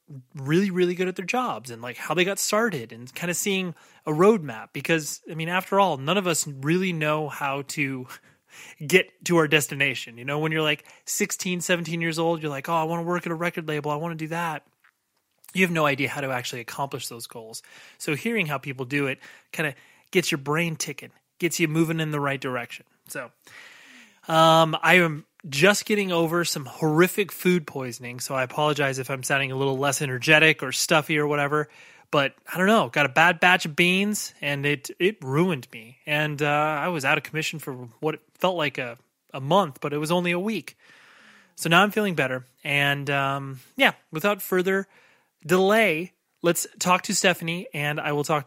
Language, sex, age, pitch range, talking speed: English, male, 30-49, 140-180 Hz, 210 wpm